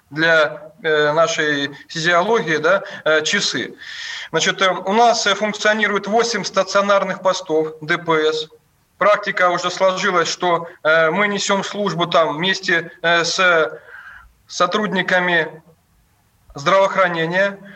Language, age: Russian, 20-39